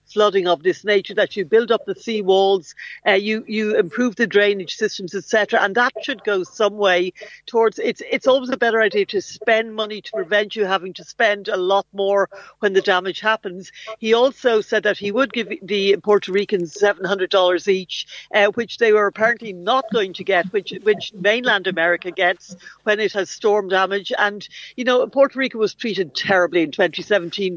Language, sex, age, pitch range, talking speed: English, female, 60-79, 185-220 Hz, 190 wpm